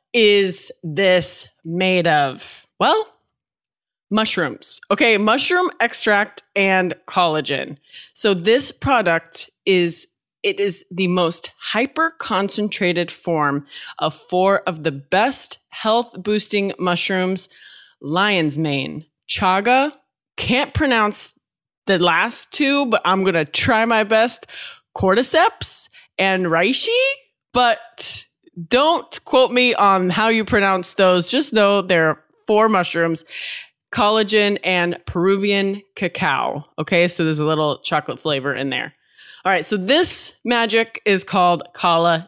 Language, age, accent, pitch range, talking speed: English, 20-39, American, 170-220 Hz, 115 wpm